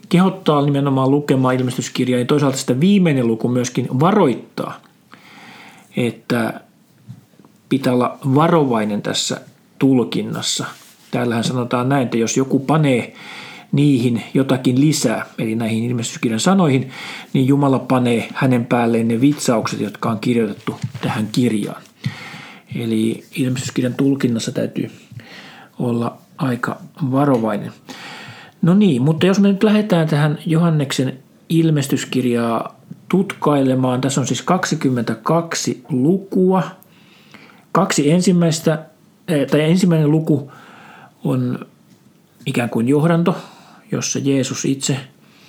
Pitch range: 125-160 Hz